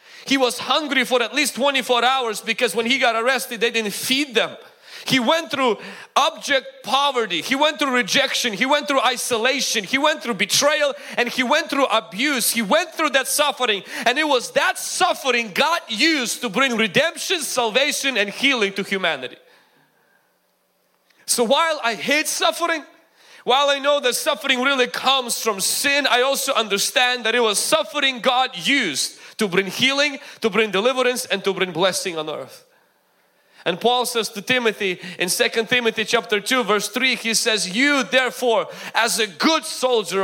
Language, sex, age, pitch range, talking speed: English, male, 30-49, 220-280 Hz, 170 wpm